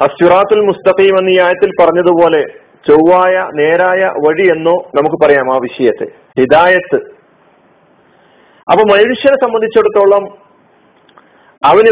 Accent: native